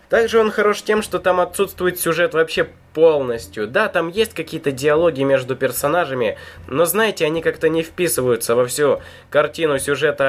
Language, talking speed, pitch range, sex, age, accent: Russian, 160 wpm, 140-190 Hz, male, 20-39, native